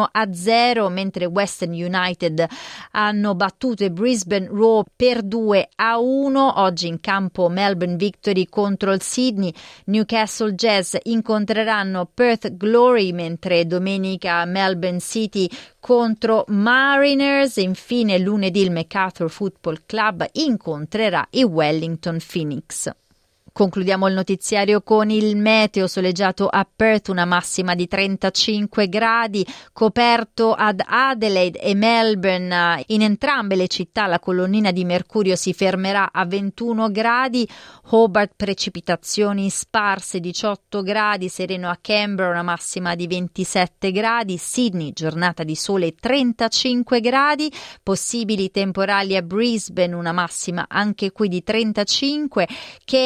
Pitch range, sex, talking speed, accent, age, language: 185-220 Hz, female, 120 wpm, native, 30-49, Italian